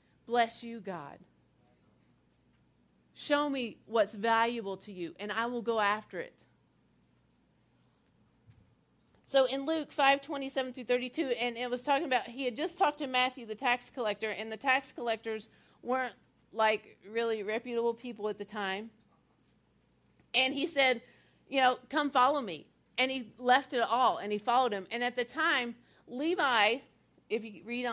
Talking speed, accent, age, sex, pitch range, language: 155 wpm, American, 40-59, female, 215-260 Hz, English